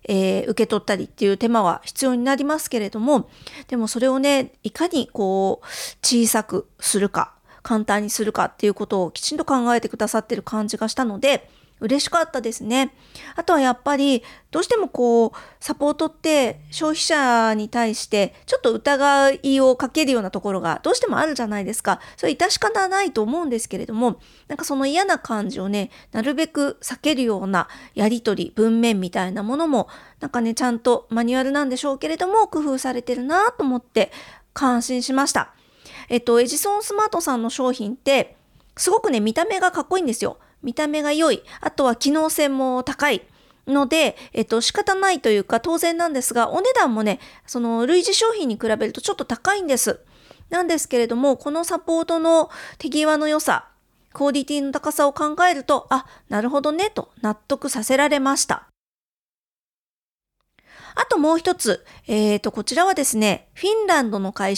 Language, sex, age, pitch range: Japanese, female, 40-59, 225-305 Hz